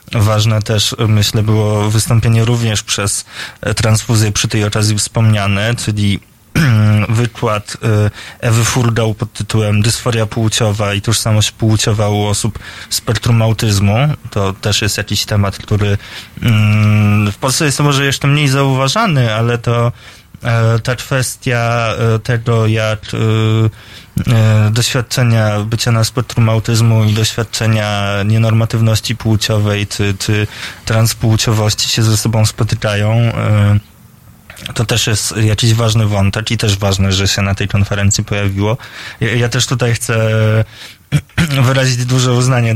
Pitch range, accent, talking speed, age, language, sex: 105-115 Hz, native, 120 wpm, 20-39, Polish, male